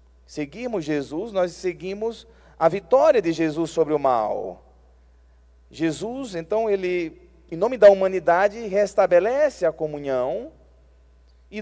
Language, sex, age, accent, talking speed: Portuguese, male, 30-49, Brazilian, 115 wpm